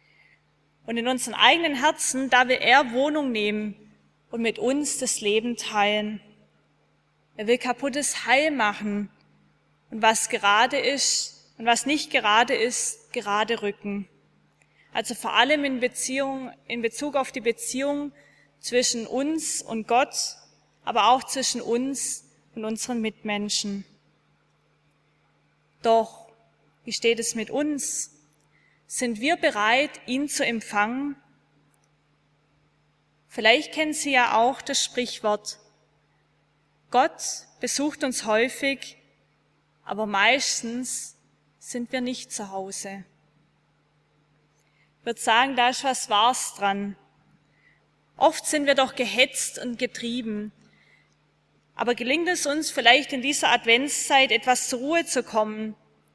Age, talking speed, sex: 20-39, 115 wpm, female